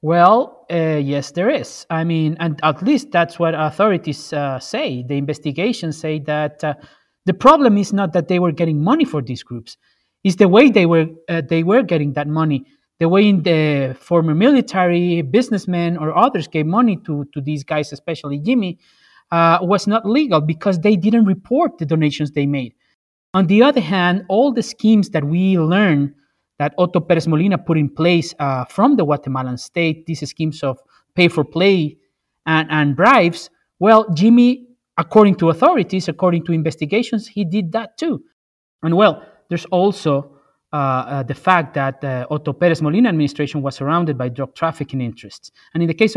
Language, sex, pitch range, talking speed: English, male, 150-195 Hz, 180 wpm